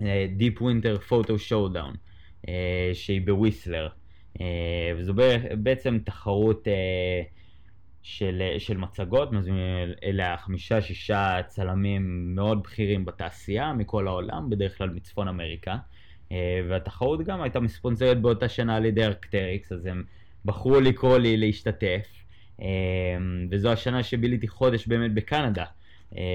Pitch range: 95-115 Hz